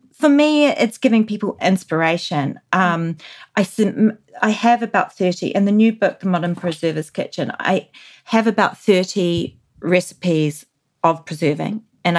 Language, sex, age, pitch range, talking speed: English, female, 30-49, 165-200 Hz, 140 wpm